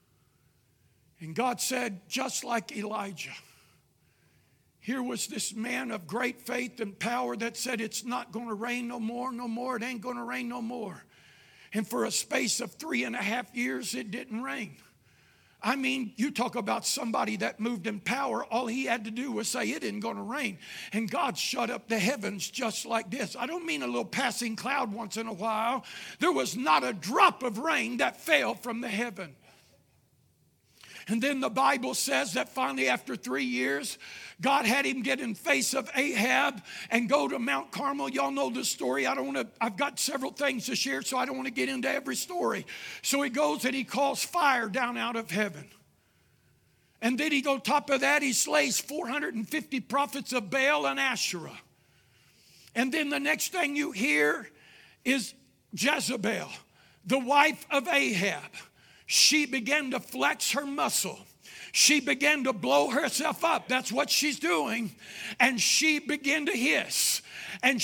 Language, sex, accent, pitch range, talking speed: English, male, American, 225-275 Hz, 180 wpm